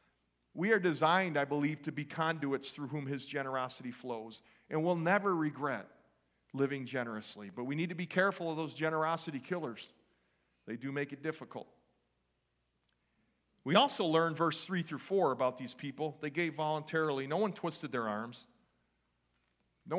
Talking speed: 160 wpm